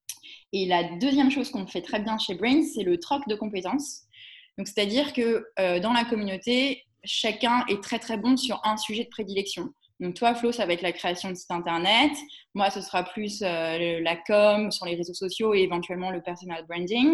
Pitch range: 180-235 Hz